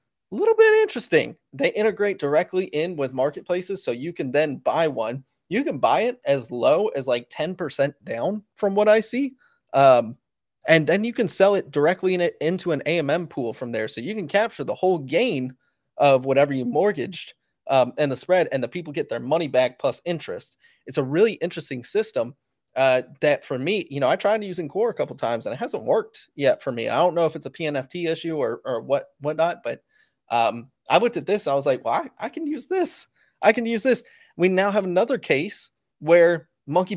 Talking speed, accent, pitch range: 215 wpm, American, 145-230 Hz